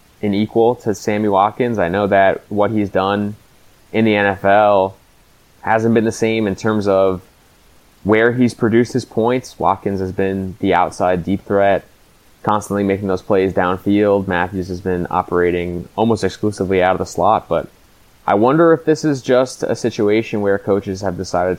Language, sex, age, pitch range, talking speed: English, male, 20-39, 90-105 Hz, 170 wpm